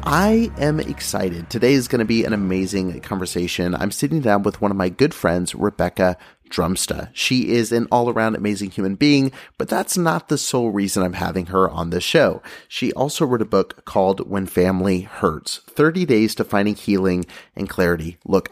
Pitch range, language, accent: 95-120 Hz, English, American